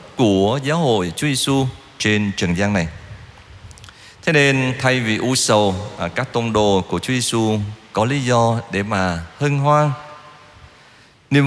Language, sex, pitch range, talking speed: Vietnamese, male, 100-135 Hz, 150 wpm